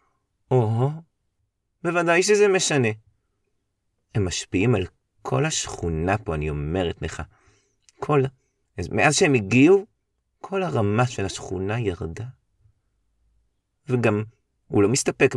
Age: 40-59